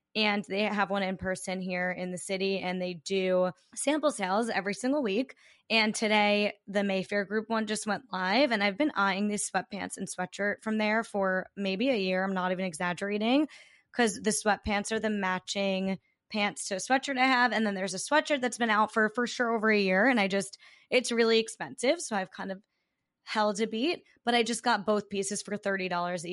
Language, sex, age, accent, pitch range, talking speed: English, female, 10-29, American, 195-250 Hz, 210 wpm